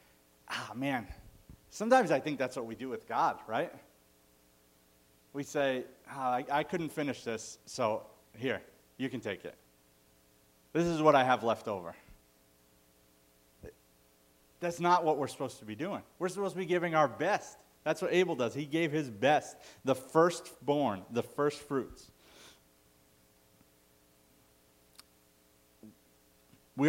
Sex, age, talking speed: male, 30-49, 140 wpm